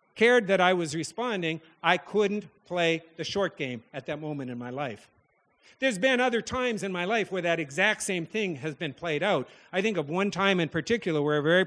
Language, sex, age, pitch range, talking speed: English, male, 50-69, 150-190 Hz, 220 wpm